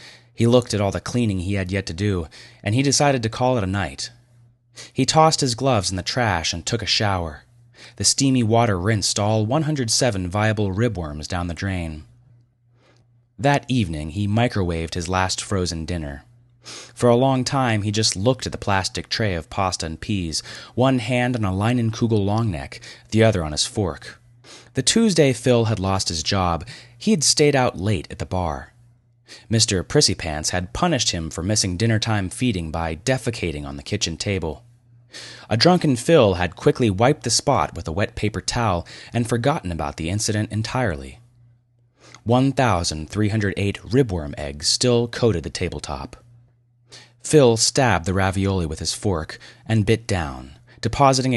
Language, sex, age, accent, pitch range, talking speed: English, male, 30-49, American, 90-120 Hz, 165 wpm